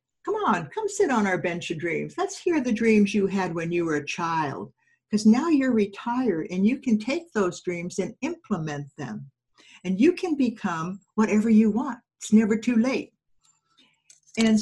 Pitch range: 170-235 Hz